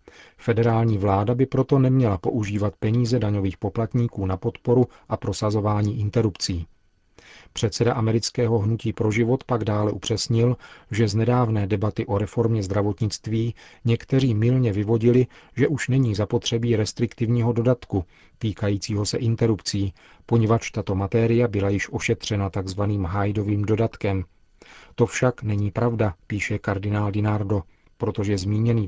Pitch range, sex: 105-120 Hz, male